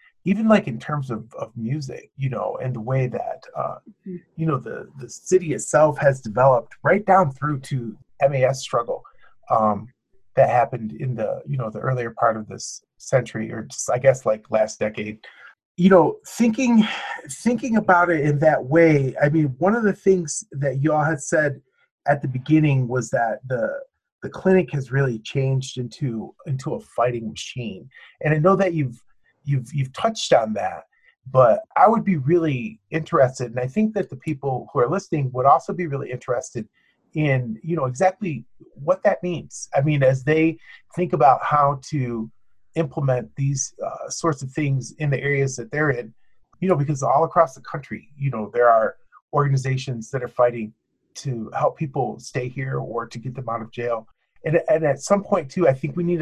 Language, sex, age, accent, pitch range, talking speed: English, male, 30-49, American, 125-165 Hz, 190 wpm